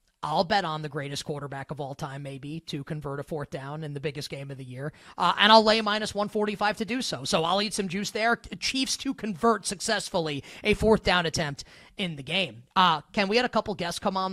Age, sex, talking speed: 30-49, male, 245 wpm